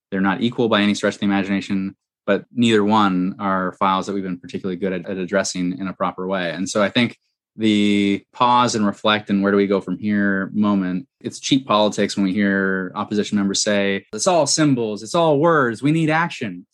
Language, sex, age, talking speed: English, male, 20-39, 215 wpm